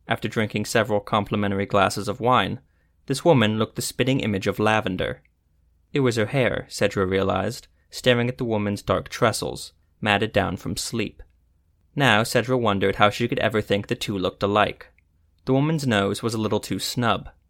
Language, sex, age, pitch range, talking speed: English, male, 20-39, 85-125 Hz, 175 wpm